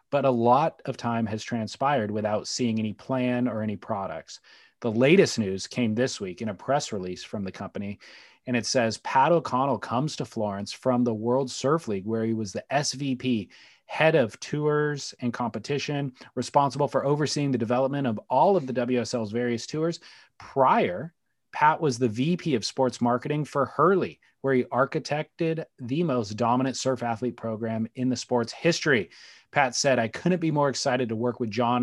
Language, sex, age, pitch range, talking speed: English, male, 30-49, 115-135 Hz, 180 wpm